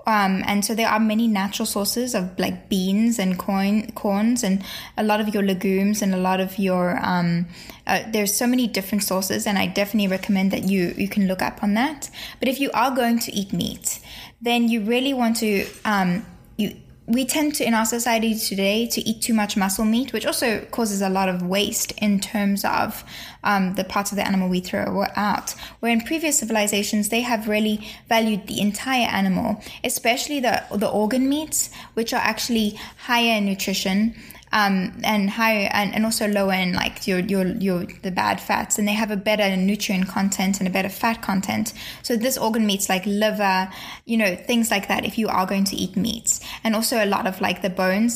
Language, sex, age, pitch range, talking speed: English, female, 10-29, 195-230 Hz, 205 wpm